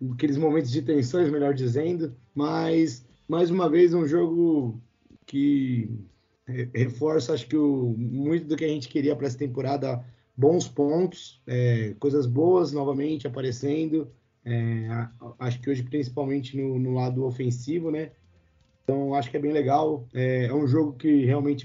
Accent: Brazilian